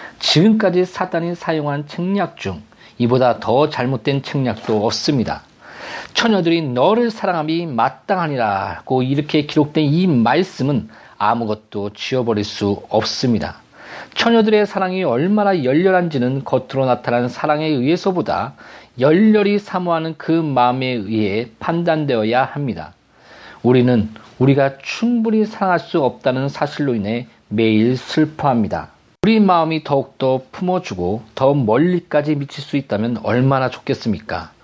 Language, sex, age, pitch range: Korean, male, 40-59, 125-175 Hz